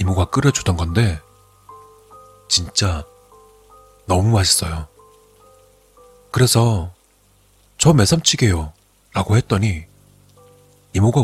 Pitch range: 90-110 Hz